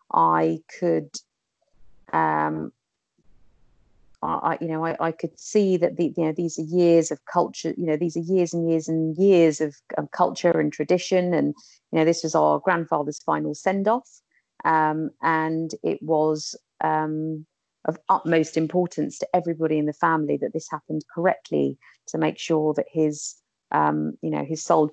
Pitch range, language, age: 155-175 Hz, English, 40-59